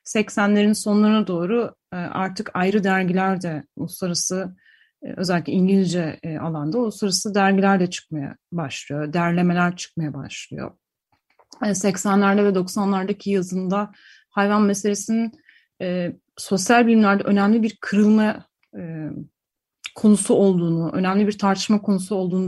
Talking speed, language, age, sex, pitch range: 100 wpm, Turkish, 30-49, female, 175-210 Hz